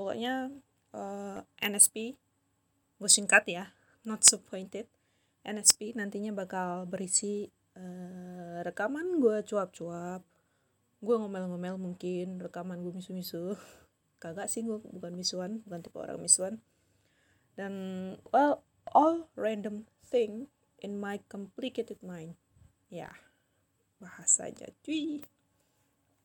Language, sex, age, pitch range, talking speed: Indonesian, female, 20-39, 185-225 Hz, 105 wpm